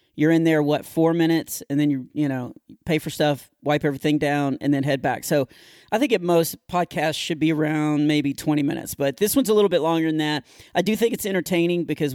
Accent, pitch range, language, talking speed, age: American, 150-185 Hz, English, 235 wpm, 40-59